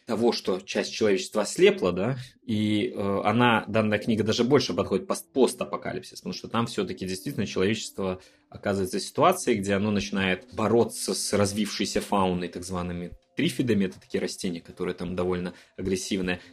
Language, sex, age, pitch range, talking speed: Russian, male, 20-39, 95-120 Hz, 150 wpm